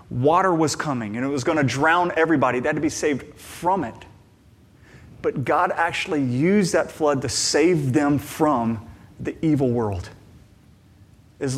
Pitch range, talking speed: 100-140 Hz, 160 wpm